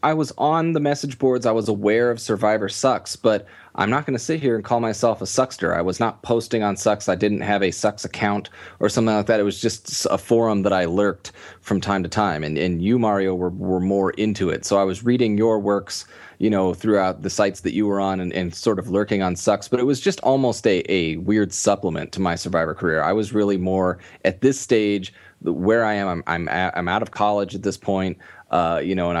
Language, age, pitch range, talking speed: English, 30-49, 95-110 Hz, 245 wpm